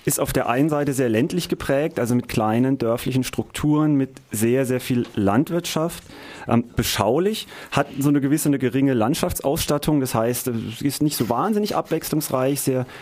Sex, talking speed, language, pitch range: male, 165 wpm, German, 115-140 Hz